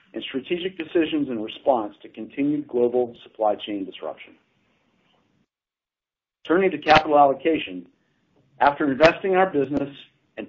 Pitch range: 120-155 Hz